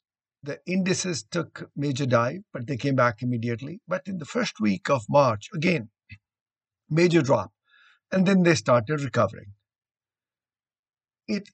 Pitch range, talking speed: 120-175 Hz, 135 wpm